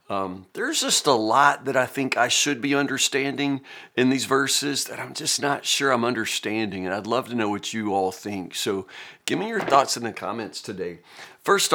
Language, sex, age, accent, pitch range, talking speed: English, male, 50-69, American, 115-145 Hz, 210 wpm